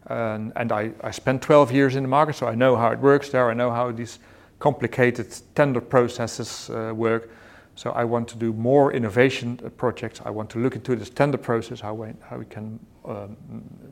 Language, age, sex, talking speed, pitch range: English, 40-59, male, 205 wpm, 110-125 Hz